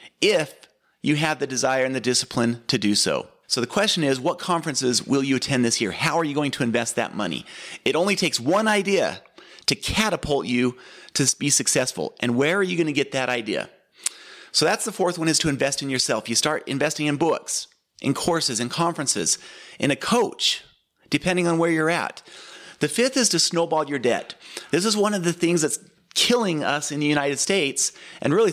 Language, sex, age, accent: English, male, 30-49, American